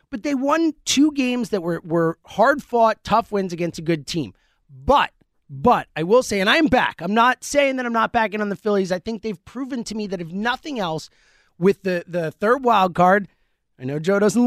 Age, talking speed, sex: 30-49, 225 wpm, male